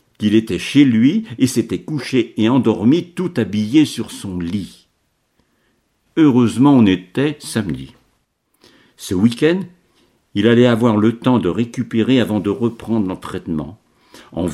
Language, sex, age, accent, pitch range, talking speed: French, male, 60-79, French, 90-125 Hz, 130 wpm